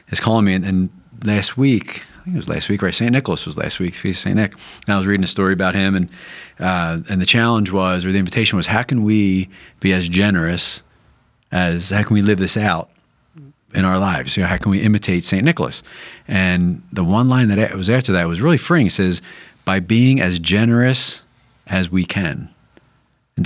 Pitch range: 90-105 Hz